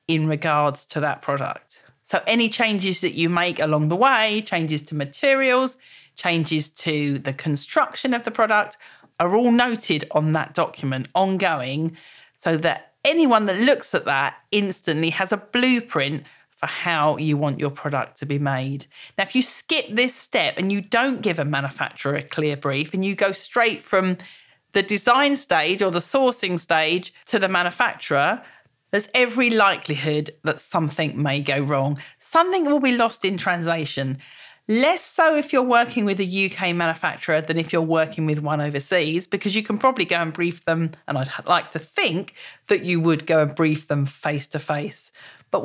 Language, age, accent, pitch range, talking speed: English, 40-59, British, 155-225 Hz, 175 wpm